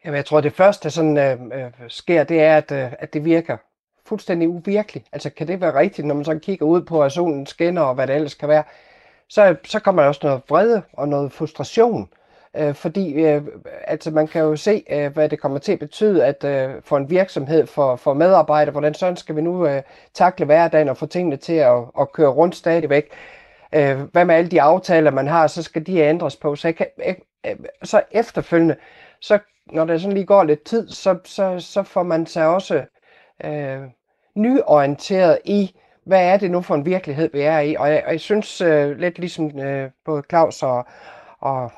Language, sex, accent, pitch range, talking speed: Danish, male, native, 145-180 Hz, 215 wpm